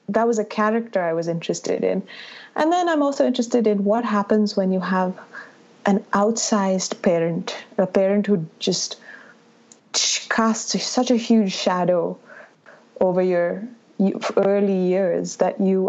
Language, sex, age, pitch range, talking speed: English, female, 20-39, 180-220 Hz, 140 wpm